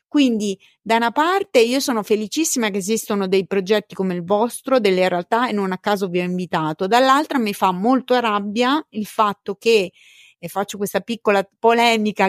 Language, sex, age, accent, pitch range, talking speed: Italian, female, 30-49, native, 205-260 Hz, 175 wpm